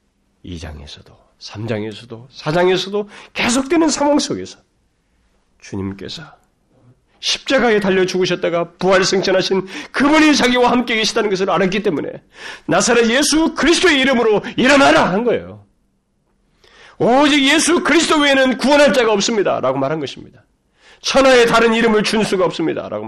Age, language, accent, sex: 40-59, Korean, native, male